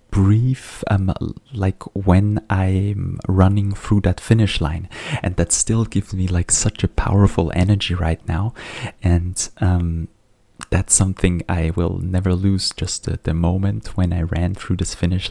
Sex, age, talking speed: male, 20-39, 155 wpm